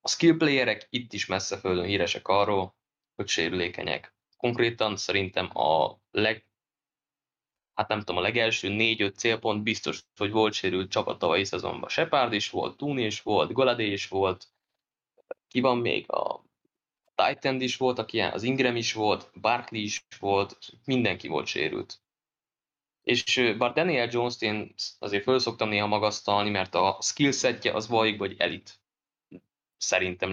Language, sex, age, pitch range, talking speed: Hungarian, male, 20-39, 100-120 Hz, 145 wpm